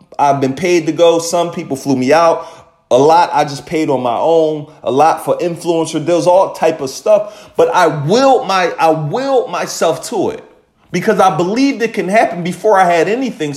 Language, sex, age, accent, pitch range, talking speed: English, male, 30-49, American, 140-175 Hz, 205 wpm